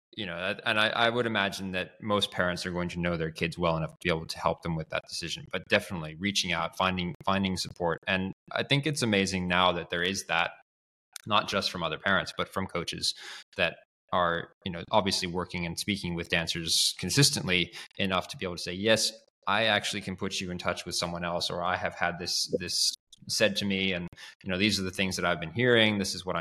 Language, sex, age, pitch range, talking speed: English, male, 20-39, 85-105 Hz, 235 wpm